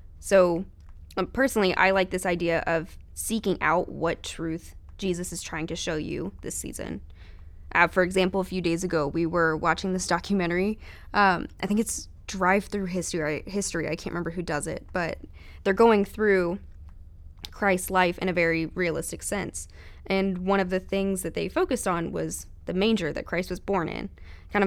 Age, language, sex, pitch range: 20-39, English, female, 150-190 Hz